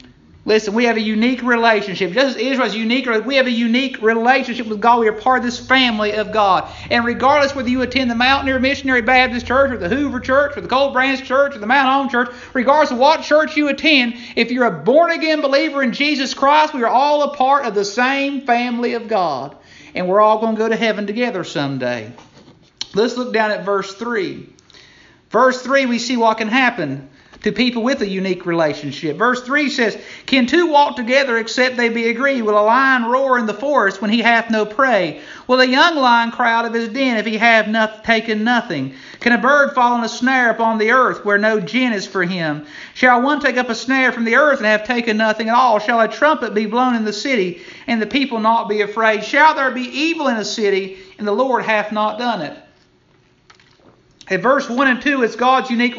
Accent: American